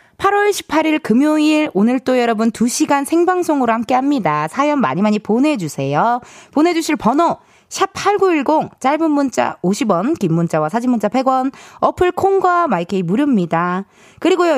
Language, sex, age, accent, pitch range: Korean, female, 20-39, native, 205-310 Hz